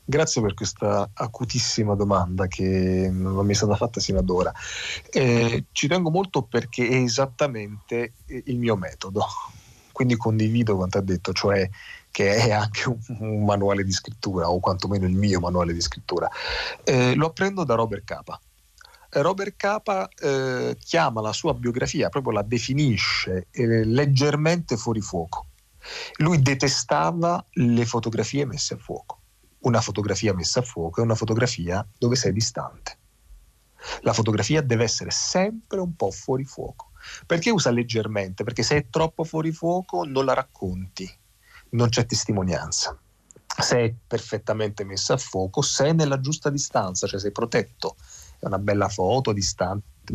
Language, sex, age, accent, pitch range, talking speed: Italian, male, 40-59, native, 100-135 Hz, 150 wpm